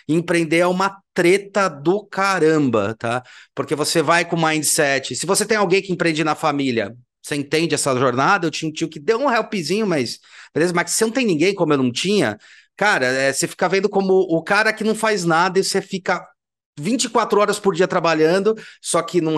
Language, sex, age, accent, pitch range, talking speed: Portuguese, male, 30-49, Brazilian, 135-170 Hz, 210 wpm